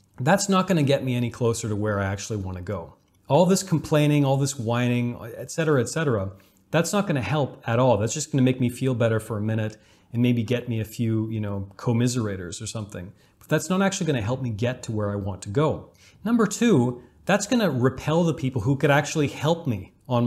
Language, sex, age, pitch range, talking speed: English, male, 30-49, 110-150 Hz, 240 wpm